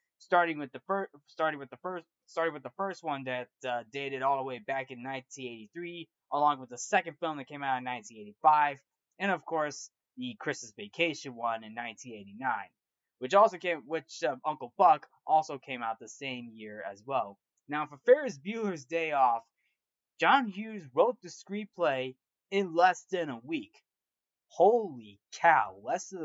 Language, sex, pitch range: English, male, 135-180 Hz